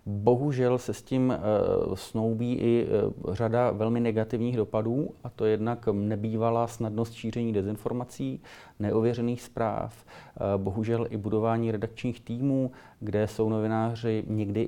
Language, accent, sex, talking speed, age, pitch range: Czech, native, male, 115 wpm, 40-59, 100-115 Hz